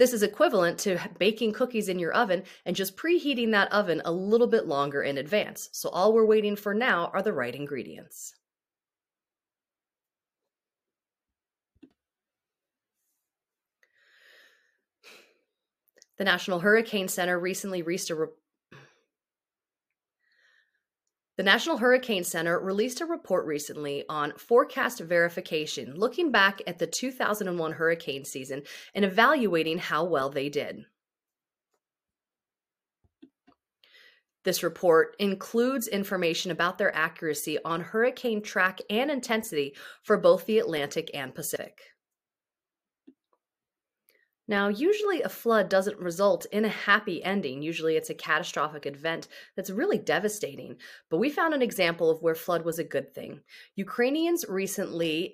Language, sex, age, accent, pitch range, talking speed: English, female, 30-49, American, 165-235 Hz, 120 wpm